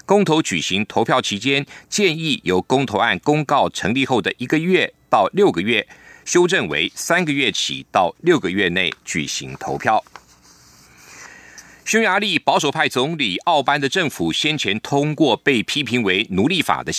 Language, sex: German, male